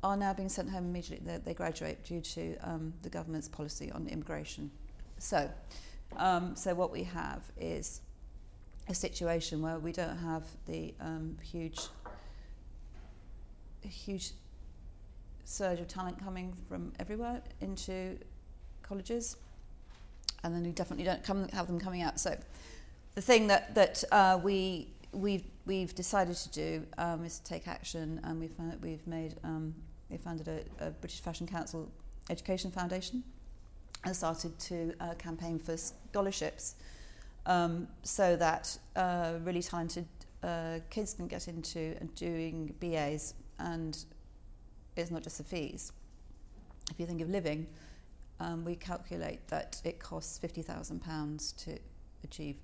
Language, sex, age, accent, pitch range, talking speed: English, female, 40-59, British, 155-180 Hz, 145 wpm